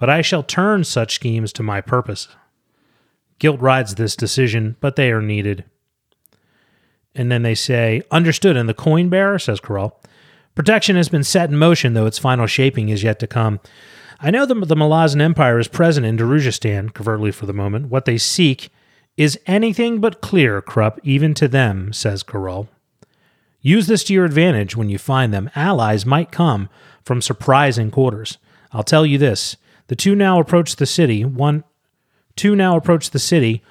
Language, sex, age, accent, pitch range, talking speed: English, male, 30-49, American, 110-155 Hz, 180 wpm